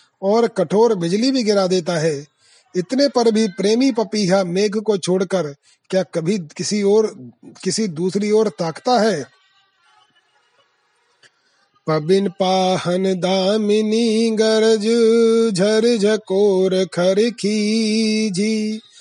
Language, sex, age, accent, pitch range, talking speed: Hindi, male, 30-49, native, 185-220 Hz, 90 wpm